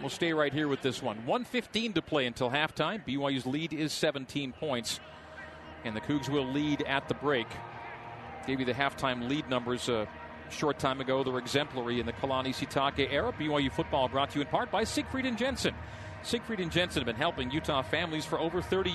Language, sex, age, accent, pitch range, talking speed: English, male, 40-59, American, 120-155 Hz, 210 wpm